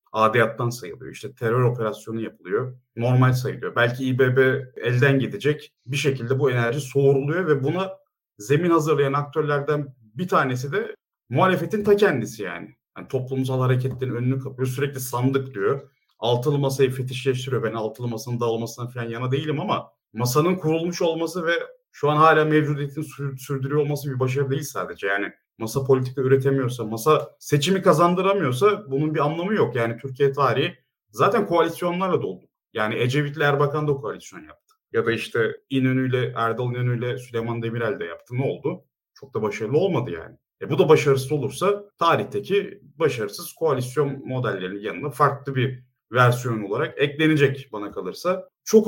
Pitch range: 125-155 Hz